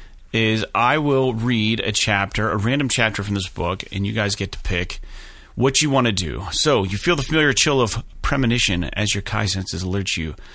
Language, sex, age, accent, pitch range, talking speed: English, male, 30-49, American, 90-120 Hz, 210 wpm